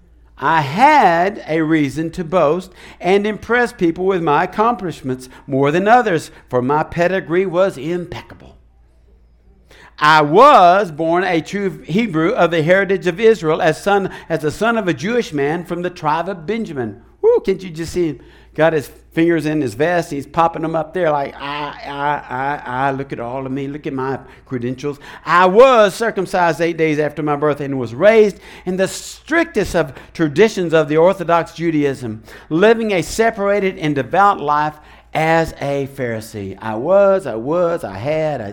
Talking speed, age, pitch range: 175 wpm, 60-79, 130-180 Hz